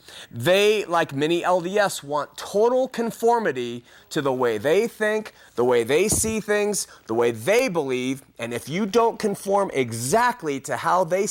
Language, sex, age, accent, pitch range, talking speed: English, male, 30-49, American, 135-190 Hz, 160 wpm